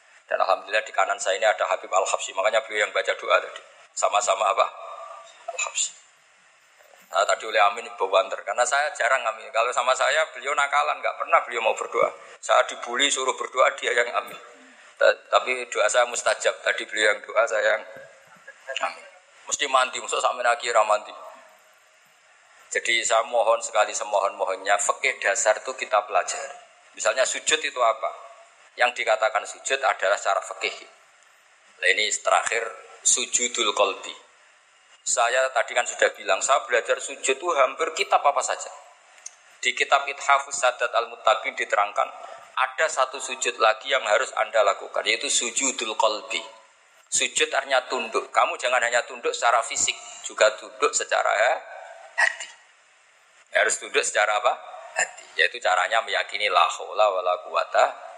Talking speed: 140 wpm